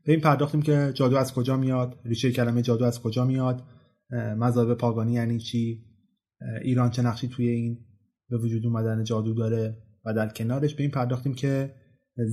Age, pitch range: 20-39, 115-145 Hz